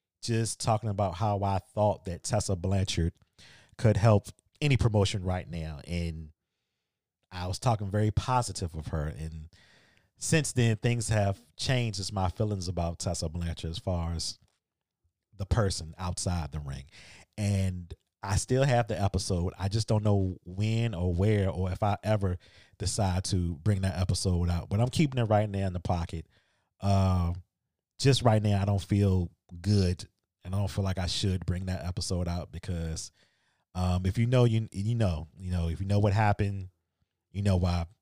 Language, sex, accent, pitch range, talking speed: English, male, American, 90-105 Hz, 175 wpm